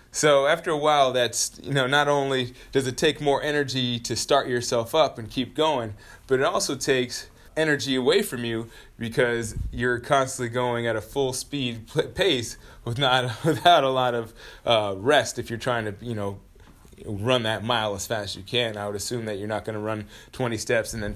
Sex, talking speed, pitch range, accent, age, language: male, 210 wpm, 115-140 Hz, American, 30-49, English